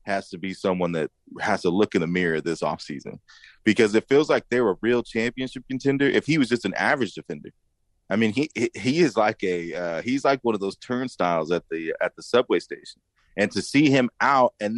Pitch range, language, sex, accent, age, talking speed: 90-120 Hz, English, male, American, 30-49, 225 wpm